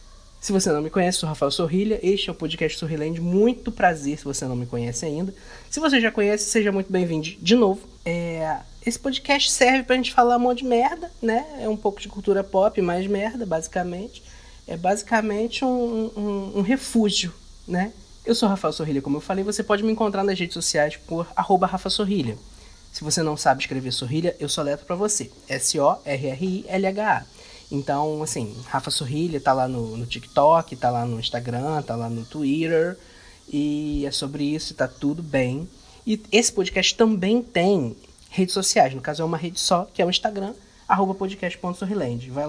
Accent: Brazilian